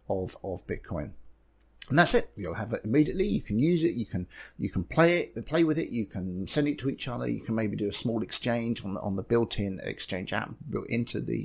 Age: 50-69